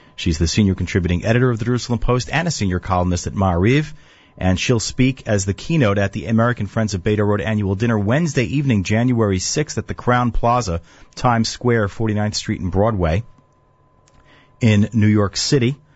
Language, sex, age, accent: English, male, 30-49, American